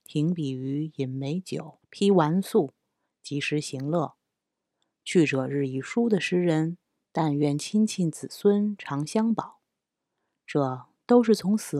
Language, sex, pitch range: Chinese, female, 145-195 Hz